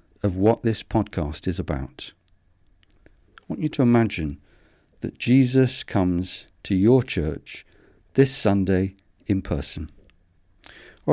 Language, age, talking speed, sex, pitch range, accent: English, 50-69, 120 wpm, male, 85-110 Hz, British